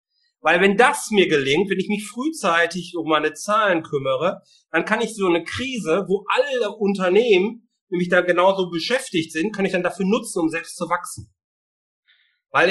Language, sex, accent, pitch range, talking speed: German, male, German, 165-220 Hz, 175 wpm